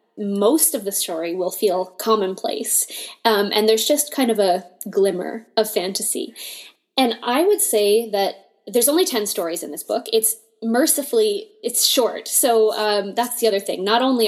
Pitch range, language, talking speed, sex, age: 200-235 Hz, English, 170 wpm, female, 10-29